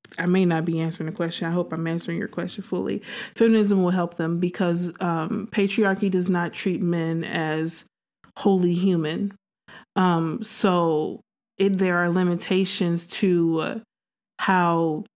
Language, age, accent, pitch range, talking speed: English, 20-39, American, 170-200 Hz, 145 wpm